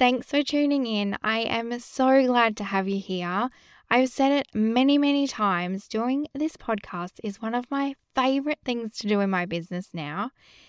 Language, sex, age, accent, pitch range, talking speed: English, female, 10-29, Australian, 195-255 Hz, 185 wpm